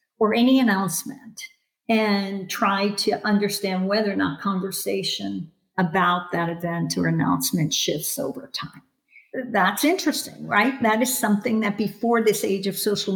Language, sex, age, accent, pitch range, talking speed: English, female, 50-69, American, 185-235 Hz, 140 wpm